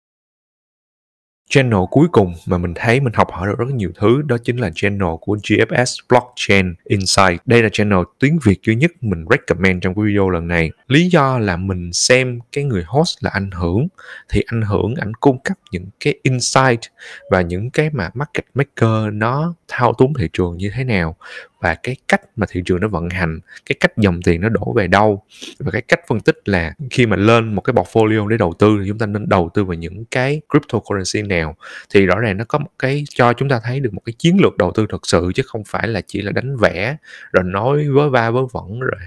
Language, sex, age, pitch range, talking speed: Vietnamese, male, 20-39, 95-130 Hz, 225 wpm